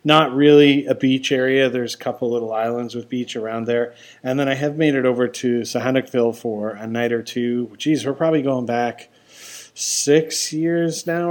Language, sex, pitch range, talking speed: English, male, 120-150 Hz, 190 wpm